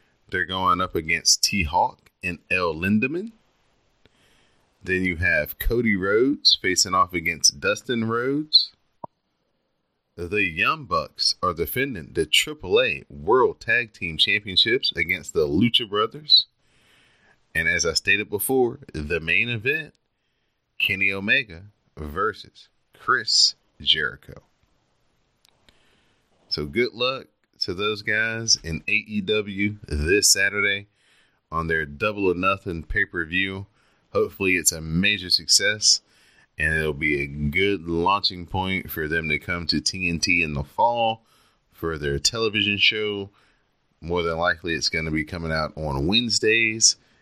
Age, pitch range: 30-49, 80-105 Hz